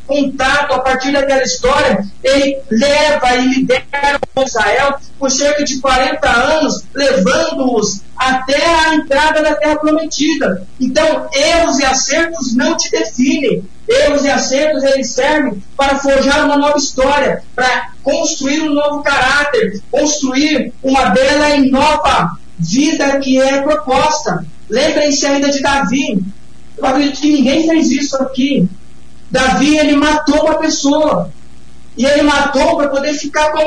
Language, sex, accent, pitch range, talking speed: Portuguese, male, Brazilian, 255-295 Hz, 135 wpm